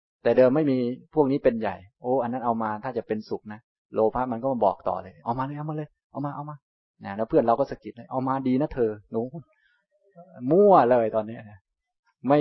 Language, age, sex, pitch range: Thai, 20-39, male, 105-130 Hz